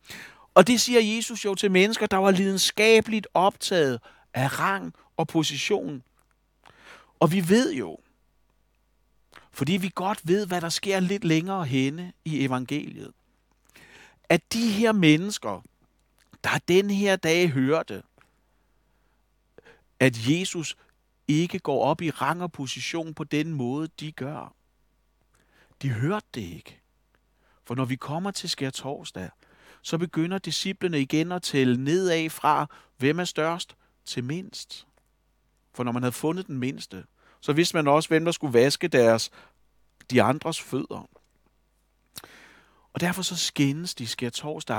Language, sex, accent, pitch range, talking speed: Danish, male, native, 140-185 Hz, 140 wpm